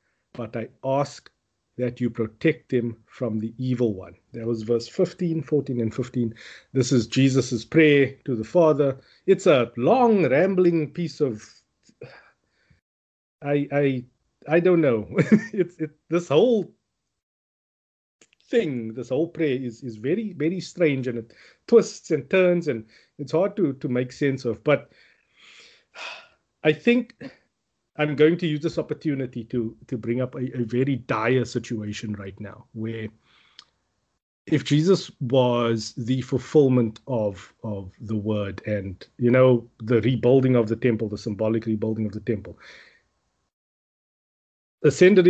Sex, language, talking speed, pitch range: male, English, 140 wpm, 115-155 Hz